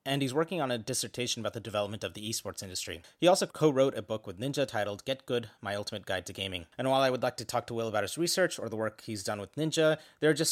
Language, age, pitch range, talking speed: English, 30-49, 110-140 Hz, 285 wpm